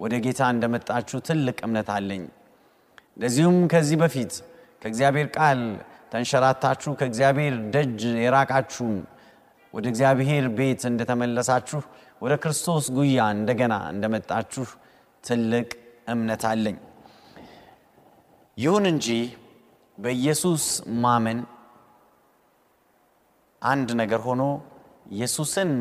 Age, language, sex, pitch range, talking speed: 30-49, Amharic, male, 120-160 Hz, 55 wpm